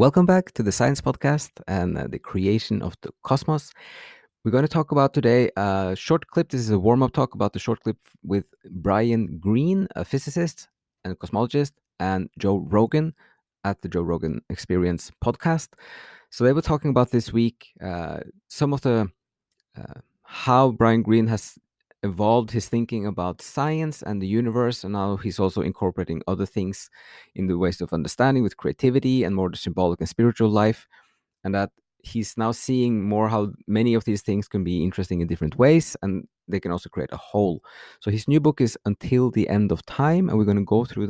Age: 30-49